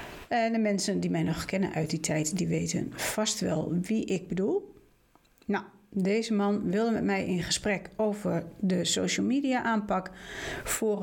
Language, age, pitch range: Dutch, 40-59, 180-230 Hz